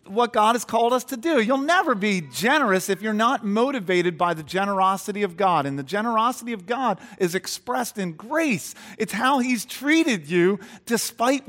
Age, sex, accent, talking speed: 40-59, male, American, 185 wpm